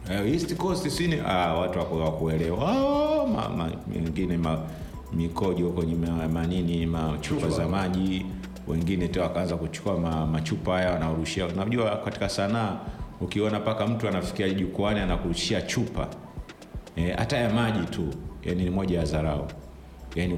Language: Swahili